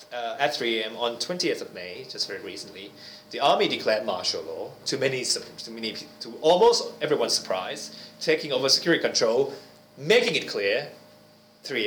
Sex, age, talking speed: male, 30-49, 160 wpm